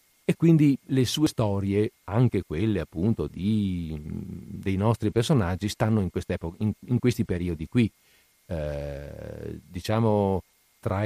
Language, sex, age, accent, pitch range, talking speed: Italian, male, 50-69, native, 100-130 Hz, 120 wpm